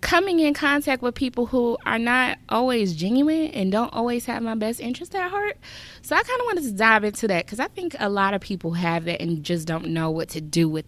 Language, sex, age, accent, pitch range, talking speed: English, female, 20-39, American, 155-215 Hz, 250 wpm